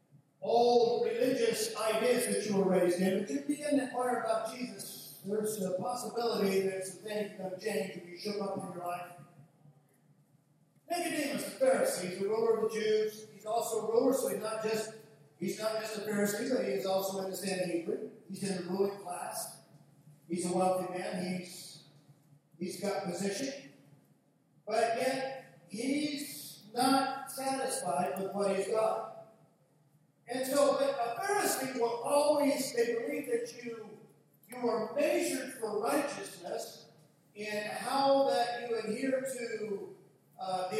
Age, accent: 50-69, American